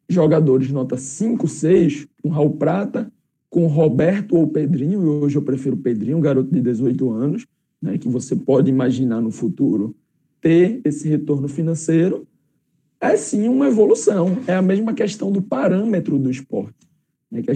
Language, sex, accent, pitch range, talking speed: Portuguese, male, Brazilian, 140-175 Hz, 155 wpm